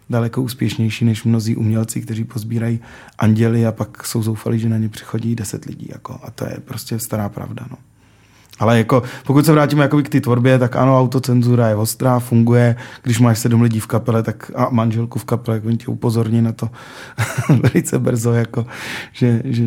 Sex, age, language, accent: male, 30-49, Czech, native